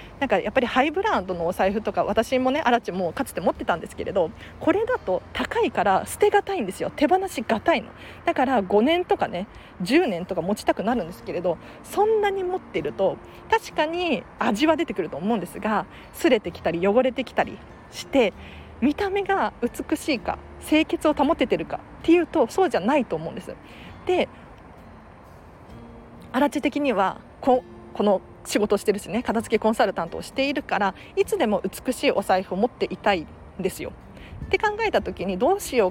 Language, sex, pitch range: Japanese, female, 210-340 Hz